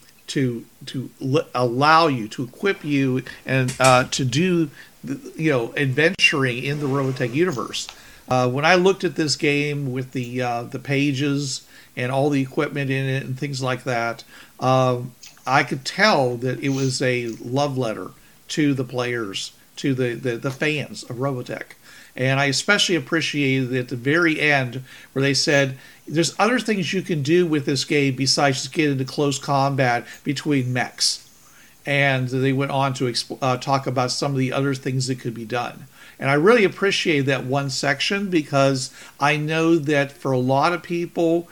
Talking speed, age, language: 180 wpm, 50-69, English